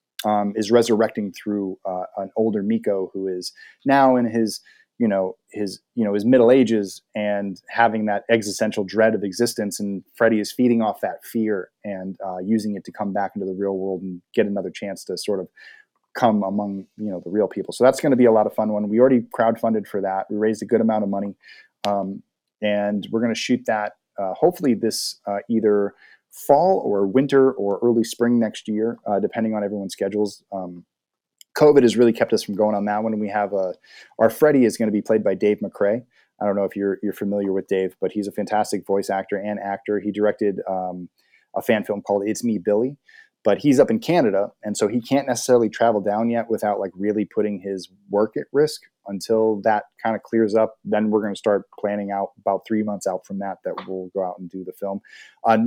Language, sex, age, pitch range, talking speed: English, male, 30-49, 100-110 Hz, 225 wpm